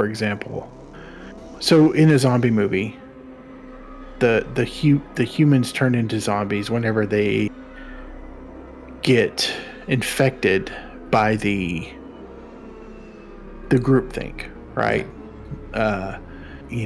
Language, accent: English, American